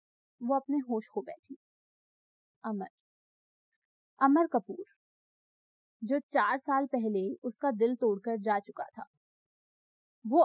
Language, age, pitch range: Hindi, 20-39, 230-310 Hz